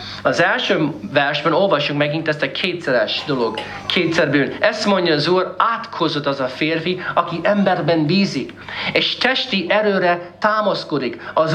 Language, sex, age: Hungarian, male, 40-59